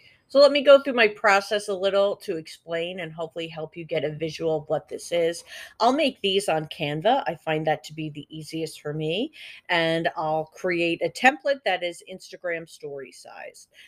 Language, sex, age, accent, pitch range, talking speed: English, female, 40-59, American, 160-210 Hz, 200 wpm